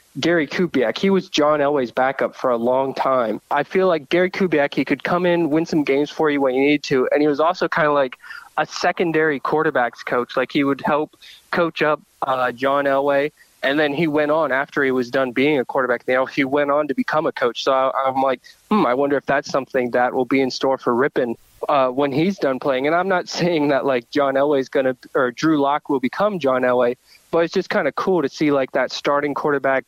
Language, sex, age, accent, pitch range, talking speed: English, male, 20-39, American, 135-170 Hz, 245 wpm